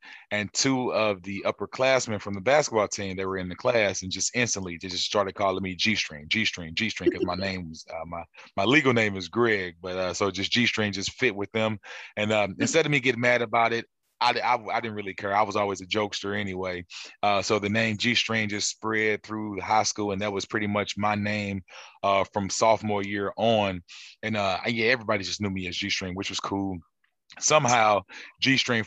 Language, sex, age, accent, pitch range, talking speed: English, male, 20-39, American, 95-110 Hz, 215 wpm